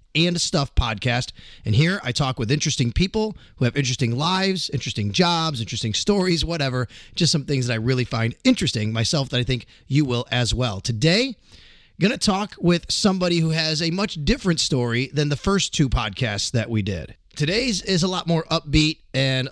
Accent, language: American, English